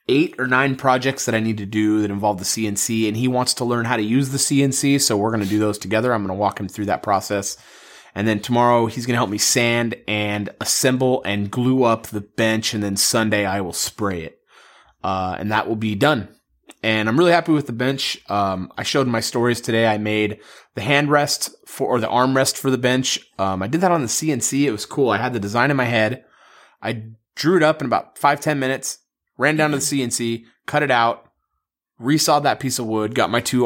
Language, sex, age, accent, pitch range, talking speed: English, male, 30-49, American, 105-135 Hz, 240 wpm